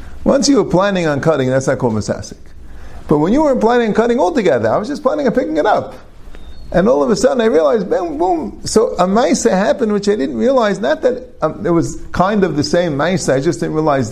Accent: American